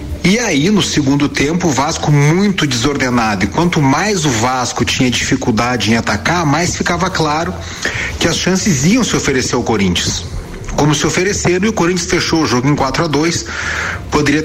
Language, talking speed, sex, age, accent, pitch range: Portuguese, 180 wpm, male, 40-59, Brazilian, 115-155 Hz